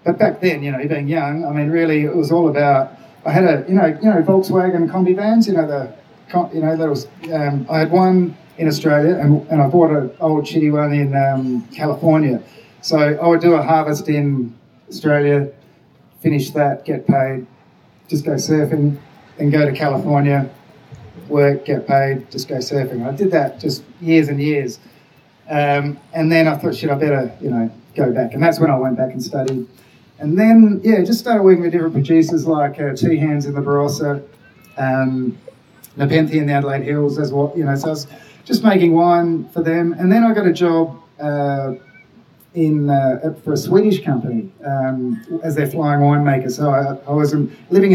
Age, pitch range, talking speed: 30-49, 140-165 Hz, 200 wpm